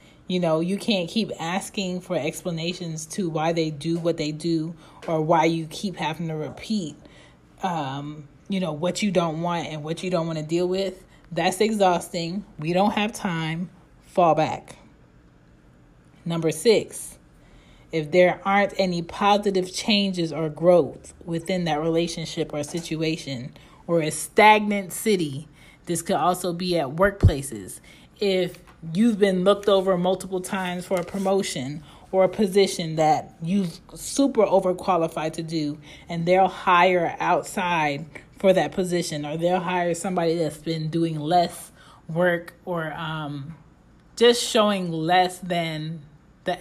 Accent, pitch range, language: American, 155-190 Hz, English